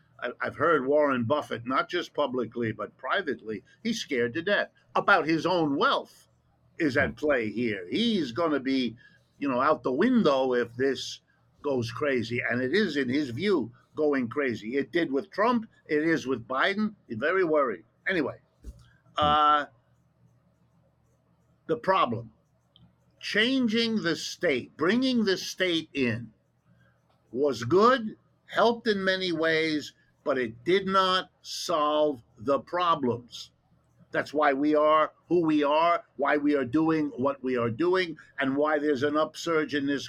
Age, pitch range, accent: 50-69, 125-165 Hz, American